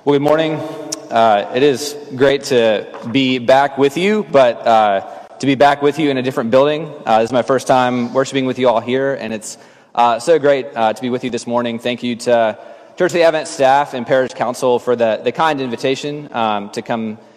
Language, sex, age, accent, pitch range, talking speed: English, male, 20-39, American, 115-145 Hz, 225 wpm